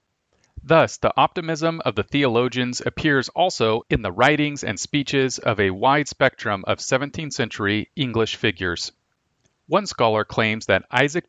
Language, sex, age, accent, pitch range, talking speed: English, male, 40-59, American, 110-140 Hz, 145 wpm